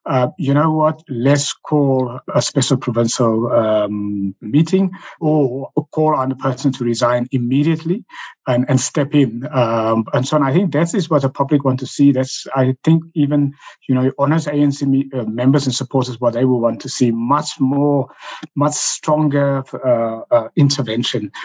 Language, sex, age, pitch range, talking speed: English, male, 60-79, 130-155 Hz, 170 wpm